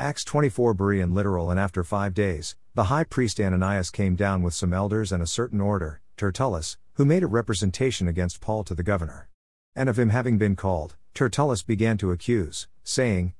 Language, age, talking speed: English, 50-69, 190 wpm